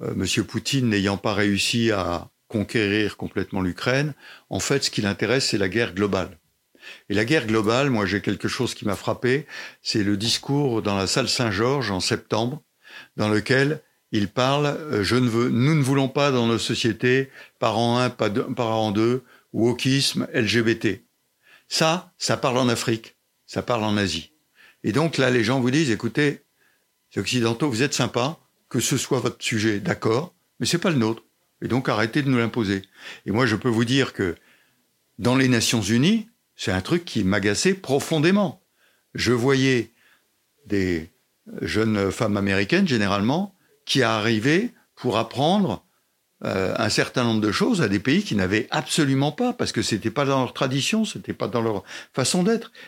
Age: 60-79